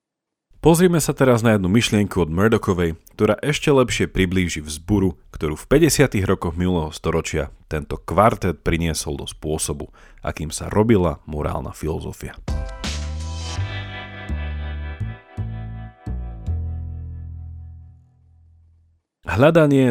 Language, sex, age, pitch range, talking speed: Slovak, male, 40-59, 80-120 Hz, 90 wpm